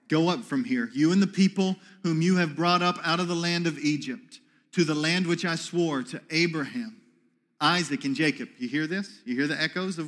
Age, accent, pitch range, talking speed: 40-59, American, 160-225 Hz, 225 wpm